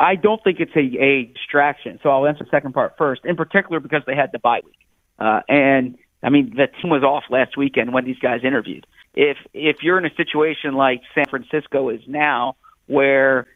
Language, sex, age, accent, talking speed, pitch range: English, male, 50-69, American, 215 wpm, 130-150 Hz